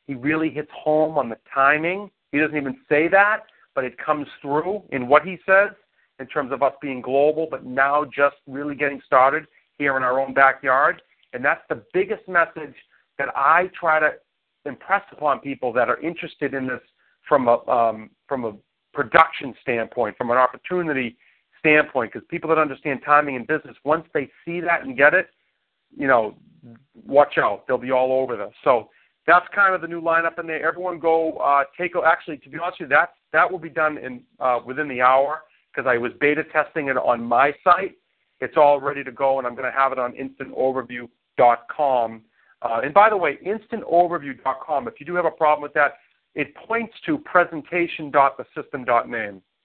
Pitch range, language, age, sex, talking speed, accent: 135-165 Hz, English, 40-59, male, 190 wpm, American